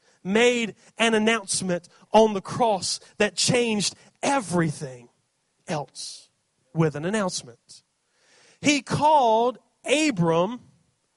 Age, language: 30-49, English